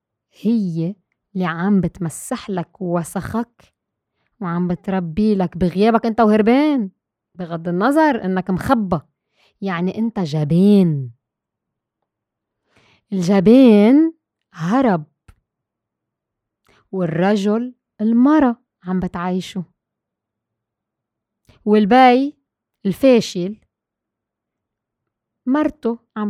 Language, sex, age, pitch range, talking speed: Arabic, female, 20-39, 175-235 Hz, 65 wpm